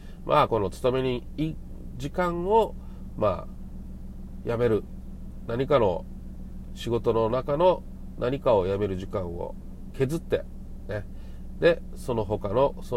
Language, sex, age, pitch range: Japanese, male, 40-59, 95-150 Hz